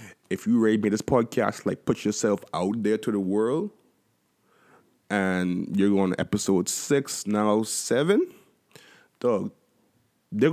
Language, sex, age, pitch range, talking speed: English, male, 20-39, 95-115 Hz, 135 wpm